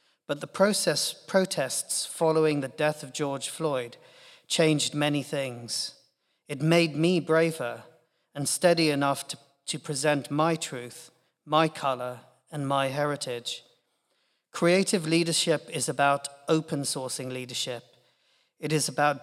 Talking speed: 125 wpm